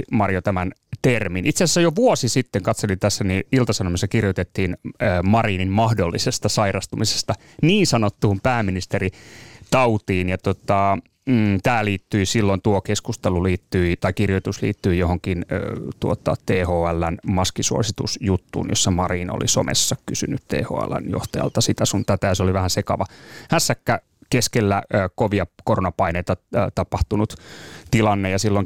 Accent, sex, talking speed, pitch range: native, male, 115 wpm, 95-120 Hz